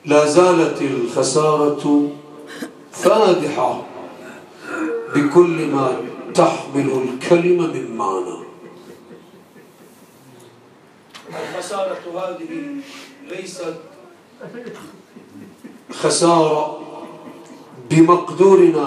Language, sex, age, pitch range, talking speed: English, male, 50-69, 150-195 Hz, 50 wpm